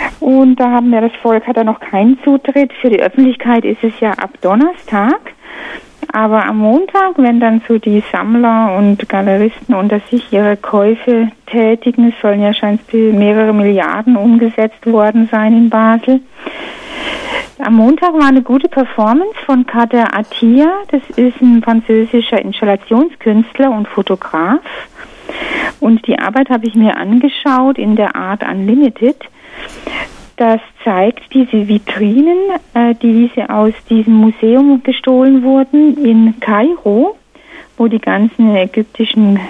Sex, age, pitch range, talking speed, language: female, 60-79, 210-260 Hz, 135 wpm, German